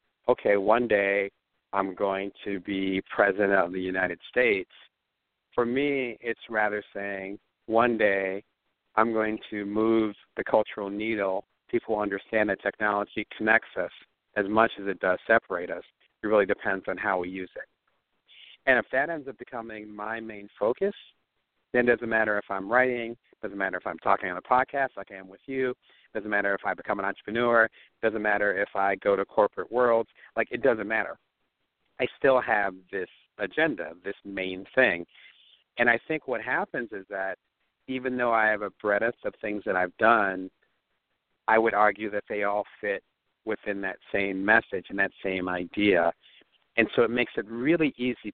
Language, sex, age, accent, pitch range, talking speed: English, male, 50-69, American, 100-115 Hz, 180 wpm